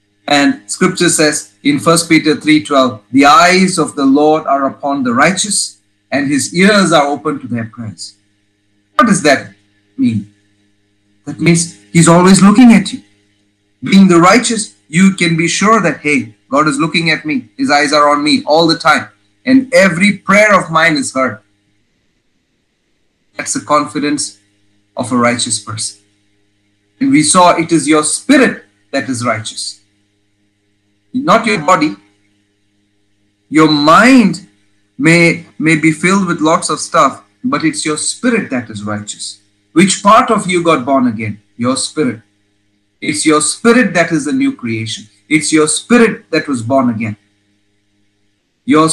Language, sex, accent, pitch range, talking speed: English, male, Indian, 100-170 Hz, 155 wpm